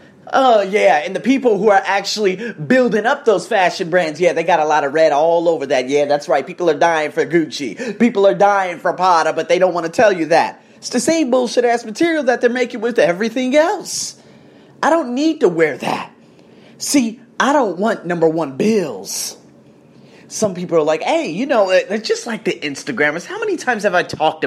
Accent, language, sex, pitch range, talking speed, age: American, English, male, 175-245 Hz, 215 wpm, 30-49